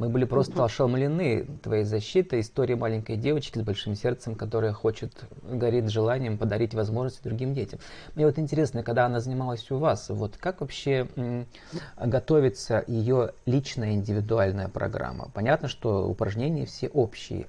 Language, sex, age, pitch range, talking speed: Russian, male, 30-49, 110-130 Hz, 150 wpm